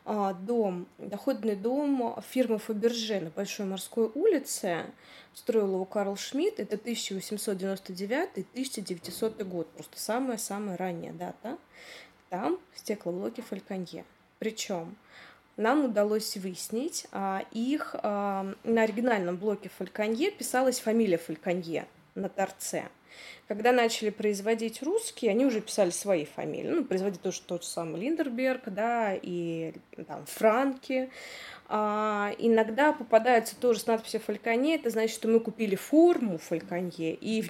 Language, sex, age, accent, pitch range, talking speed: Russian, female, 20-39, native, 195-245 Hz, 125 wpm